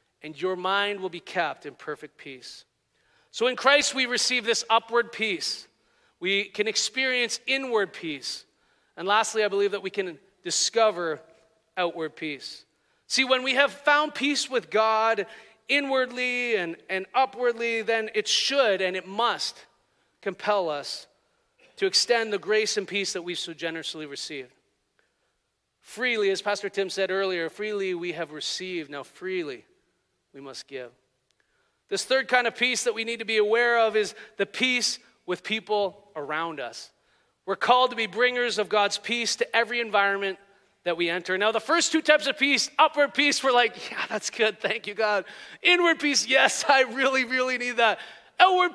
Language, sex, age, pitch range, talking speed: English, male, 40-59, 195-265 Hz, 170 wpm